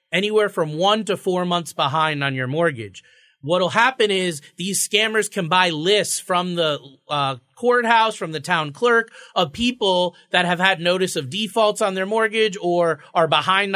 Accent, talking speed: American, 180 wpm